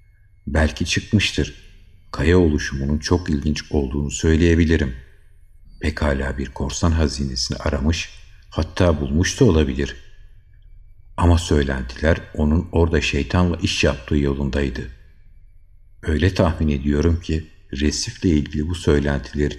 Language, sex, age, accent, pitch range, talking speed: Turkish, male, 60-79, native, 75-95 Hz, 100 wpm